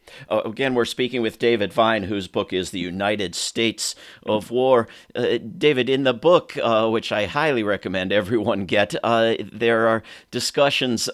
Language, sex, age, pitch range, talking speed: English, male, 50-69, 100-120 Hz, 165 wpm